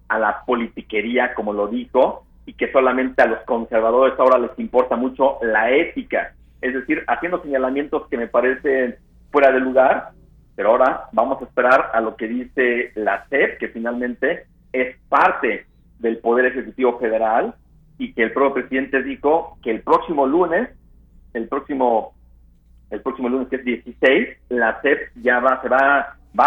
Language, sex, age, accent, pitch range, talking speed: Spanish, male, 50-69, Mexican, 115-140 Hz, 165 wpm